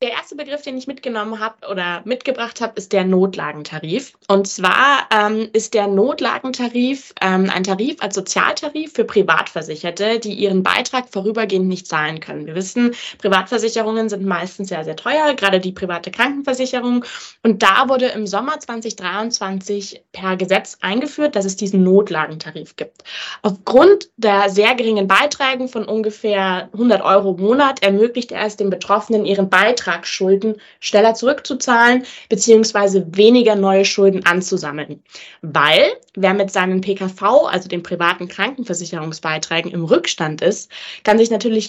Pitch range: 185-235 Hz